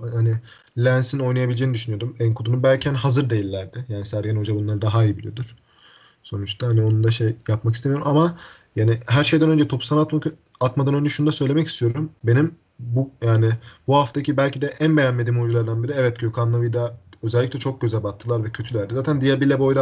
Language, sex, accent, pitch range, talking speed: Turkish, male, native, 115-130 Hz, 180 wpm